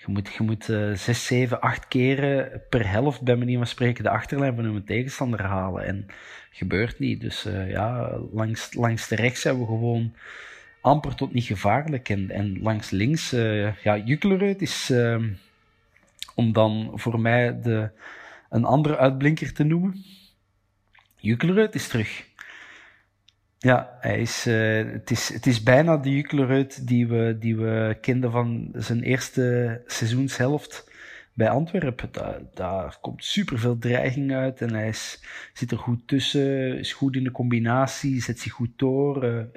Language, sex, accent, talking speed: Dutch, male, Dutch, 160 wpm